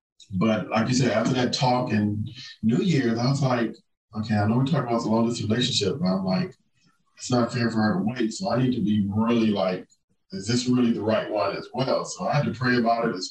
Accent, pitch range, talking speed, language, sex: American, 105-125 Hz, 250 wpm, English, male